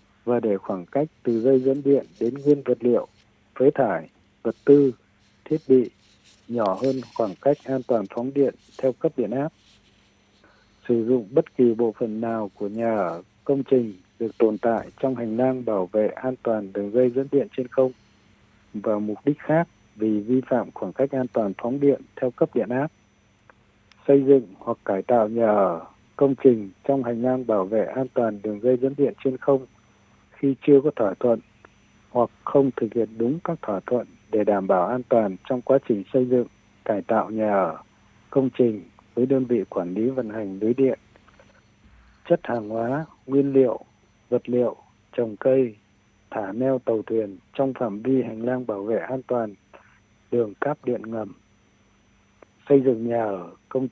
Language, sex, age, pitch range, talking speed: Vietnamese, male, 60-79, 105-130 Hz, 185 wpm